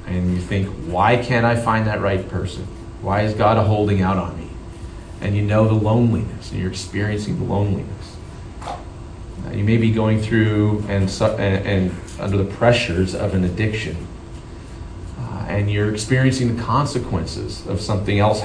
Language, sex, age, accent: English, male, 30-49, American